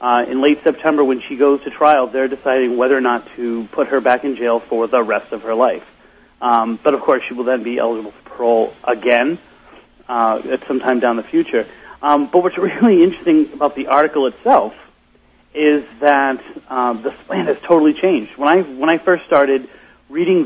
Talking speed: 200 wpm